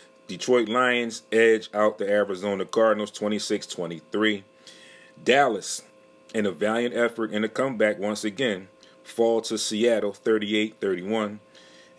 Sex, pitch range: male, 100-120 Hz